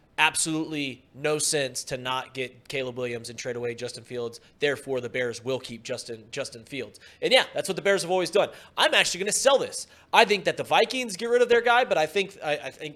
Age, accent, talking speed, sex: 30-49, American, 240 wpm, male